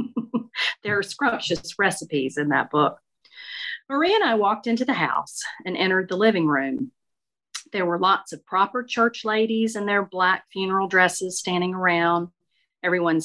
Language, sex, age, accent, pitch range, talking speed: English, female, 40-59, American, 170-235 Hz, 155 wpm